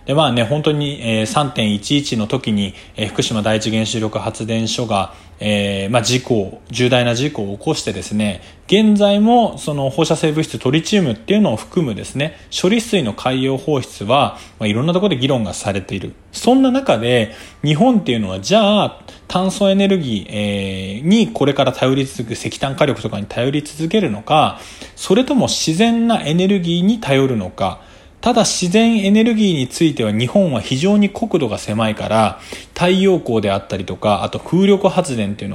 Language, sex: Japanese, male